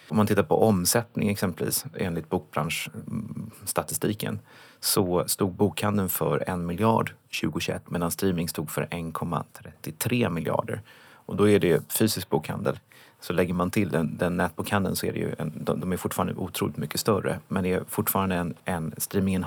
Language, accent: Swedish, native